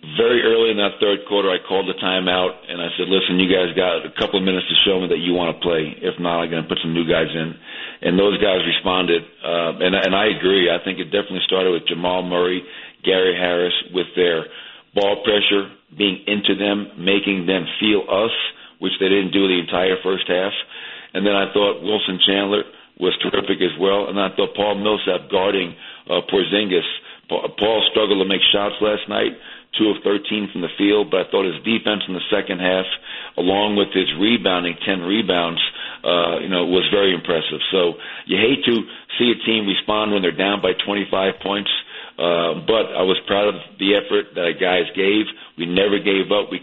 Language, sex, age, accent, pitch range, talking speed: English, male, 50-69, American, 90-100 Hz, 205 wpm